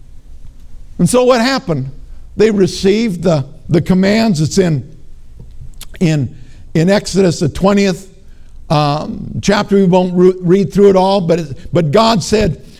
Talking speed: 140 wpm